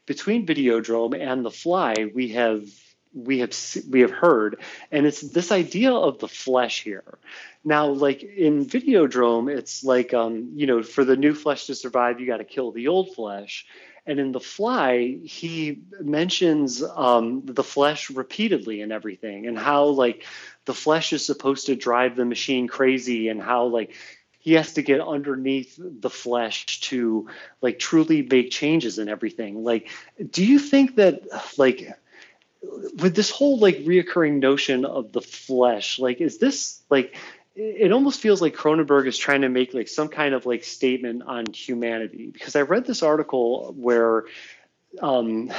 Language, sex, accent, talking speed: English, male, American, 165 wpm